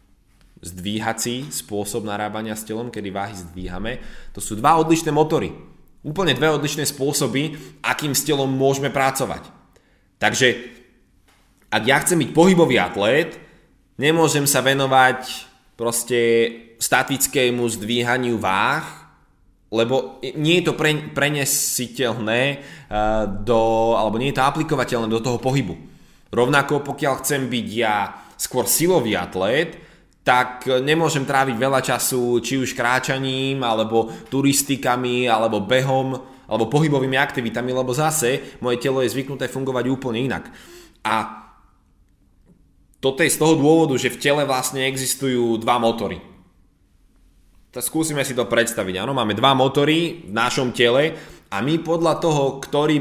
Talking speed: 130 wpm